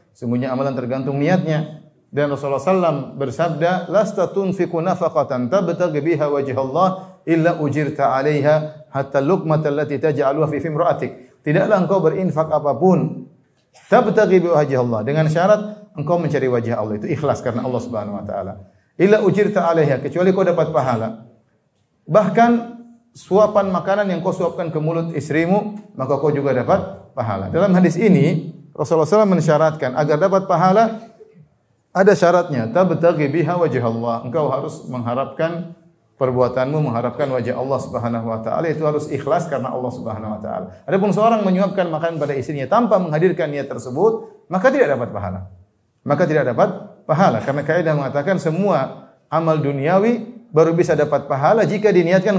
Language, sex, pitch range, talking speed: Indonesian, male, 140-190 Hz, 125 wpm